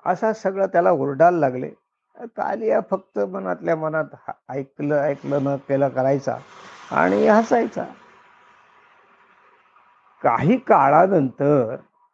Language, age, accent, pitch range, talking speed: Marathi, 50-69, native, 140-190 Hz, 90 wpm